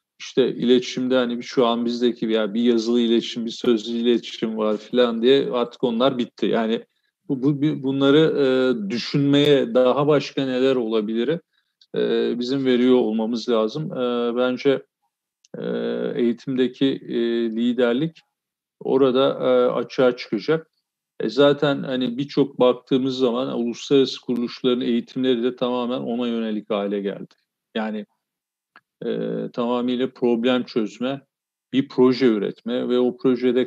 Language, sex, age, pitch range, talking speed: Turkish, male, 40-59, 115-130 Hz, 105 wpm